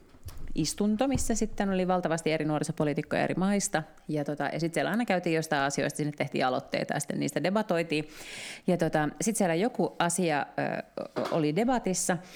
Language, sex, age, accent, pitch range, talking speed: Finnish, female, 30-49, native, 145-195 Hz, 170 wpm